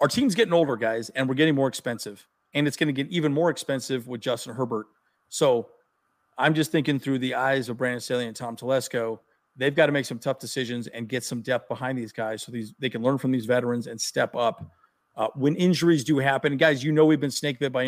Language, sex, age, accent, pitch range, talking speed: English, male, 40-59, American, 120-155 Hz, 240 wpm